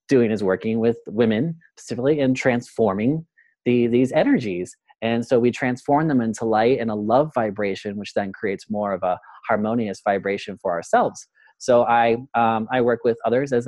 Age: 30-49